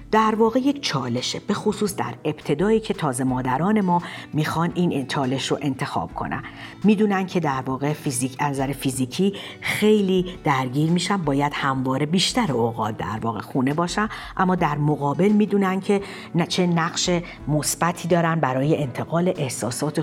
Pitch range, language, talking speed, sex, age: 135-190 Hz, Persian, 145 wpm, female, 50-69